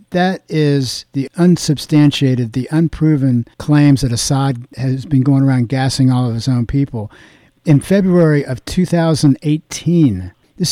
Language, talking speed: English, 135 wpm